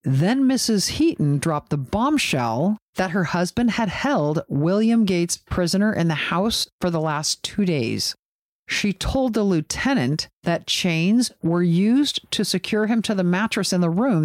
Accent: American